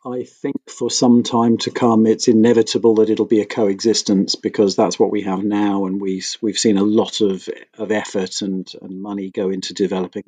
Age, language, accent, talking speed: 40-59, German, British, 205 wpm